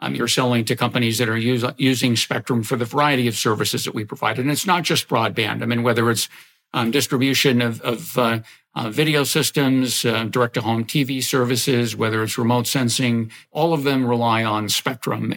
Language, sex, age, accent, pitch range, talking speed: English, male, 50-69, American, 120-140 Hz, 185 wpm